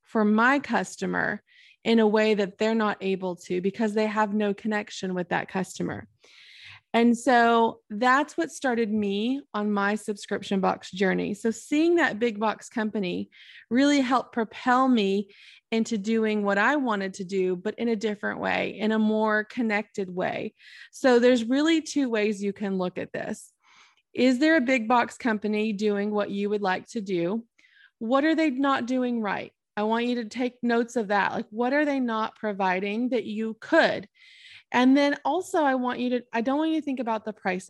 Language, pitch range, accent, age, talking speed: English, 210-255 Hz, American, 20-39, 190 wpm